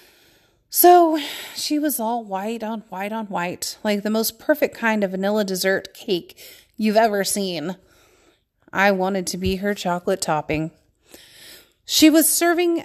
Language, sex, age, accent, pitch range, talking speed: English, female, 30-49, American, 185-225 Hz, 145 wpm